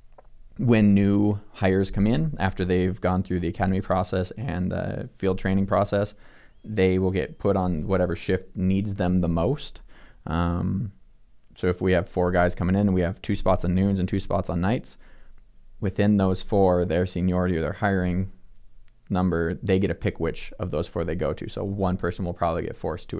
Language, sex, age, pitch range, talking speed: English, male, 20-39, 90-100 Hz, 195 wpm